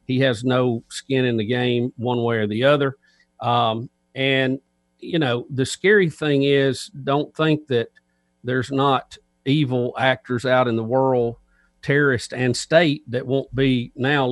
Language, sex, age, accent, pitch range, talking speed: English, male, 50-69, American, 110-140 Hz, 160 wpm